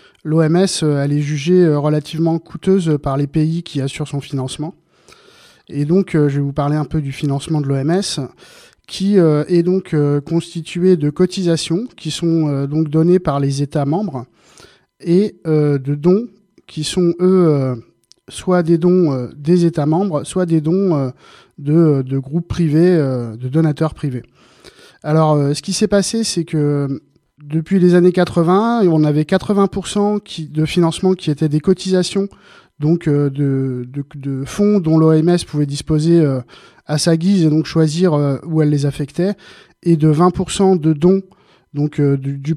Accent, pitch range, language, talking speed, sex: French, 150-180 Hz, French, 150 wpm, male